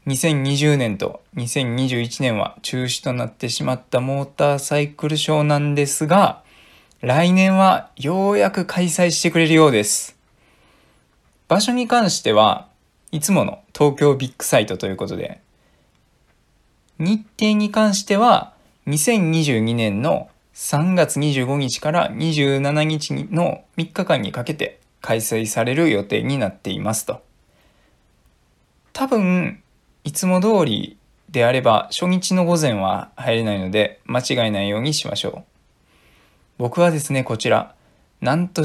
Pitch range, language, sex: 120-175 Hz, Japanese, male